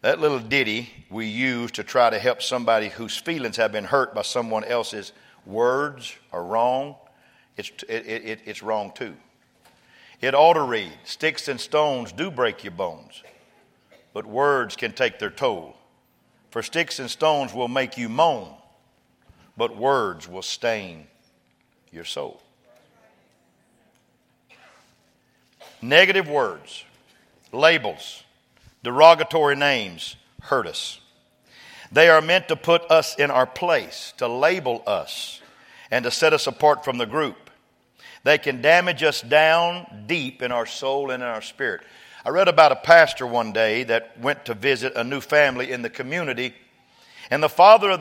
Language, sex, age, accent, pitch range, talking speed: English, male, 50-69, American, 120-160 Hz, 150 wpm